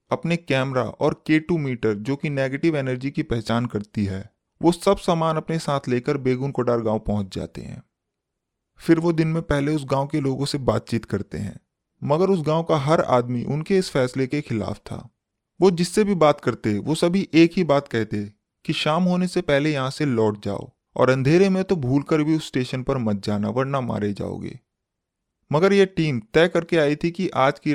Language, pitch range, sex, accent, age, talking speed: Hindi, 115-160 Hz, male, native, 20-39, 205 wpm